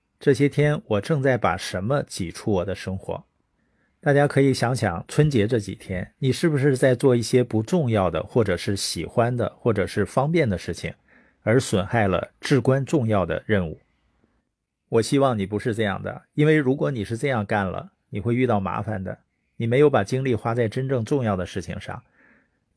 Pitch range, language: 100-130 Hz, Chinese